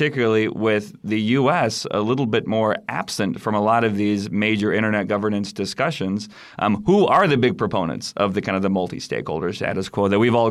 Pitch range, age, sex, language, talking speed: 105-120 Hz, 30-49, male, English, 200 wpm